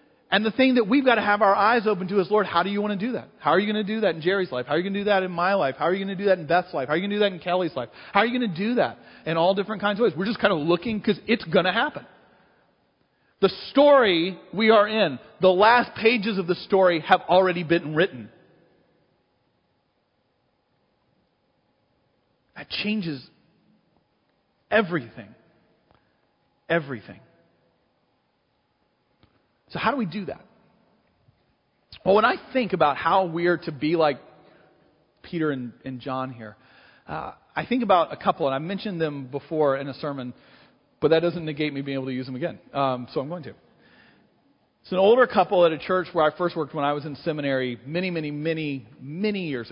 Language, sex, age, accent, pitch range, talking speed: English, male, 40-59, American, 140-200 Hz, 210 wpm